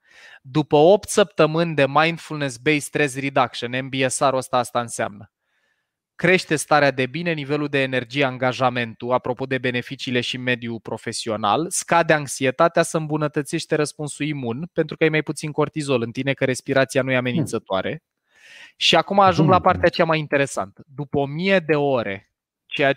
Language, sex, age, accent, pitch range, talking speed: Romanian, male, 20-39, native, 125-155 Hz, 150 wpm